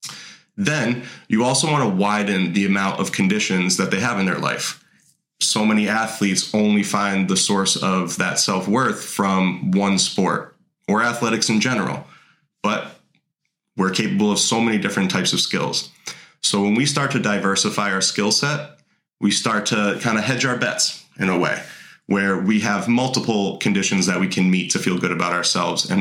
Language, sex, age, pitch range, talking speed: English, male, 20-39, 95-110 Hz, 180 wpm